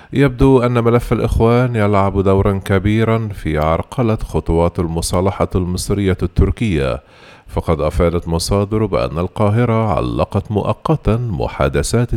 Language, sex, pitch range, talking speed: Arabic, male, 85-110 Hz, 105 wpm